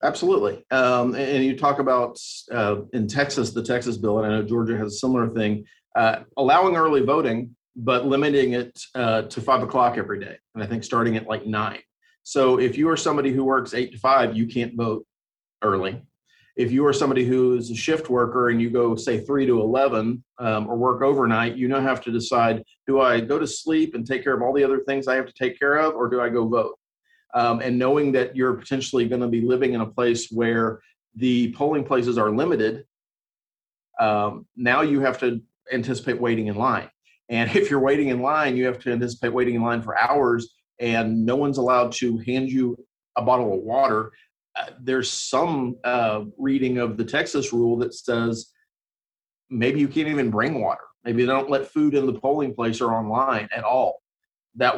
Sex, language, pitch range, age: male, English, 115-135 Hz, 40-59